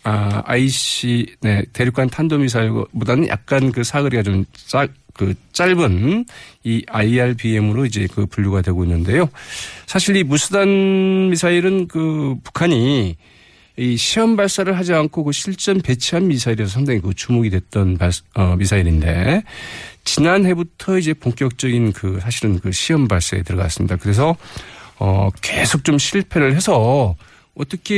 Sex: male